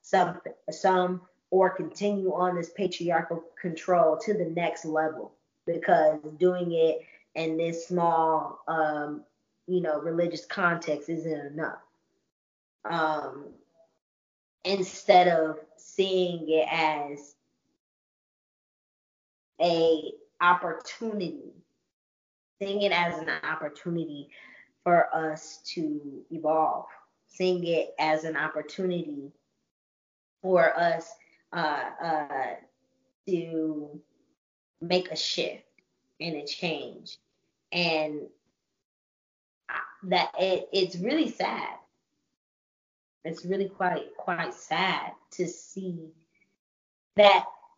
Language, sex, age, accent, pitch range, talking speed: English, female, 20-39, American, 155-185 Hz, 90 wpm